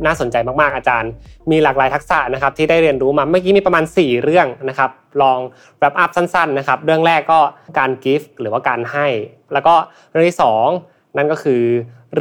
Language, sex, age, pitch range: Thai, male, 20-39, 120-155 Hz